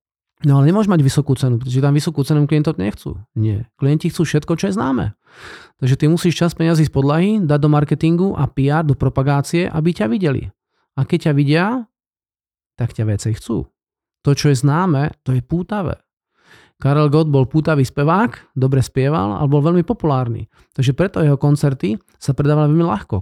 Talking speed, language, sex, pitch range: 180 wpm, Slovak, male, 135-170 Hz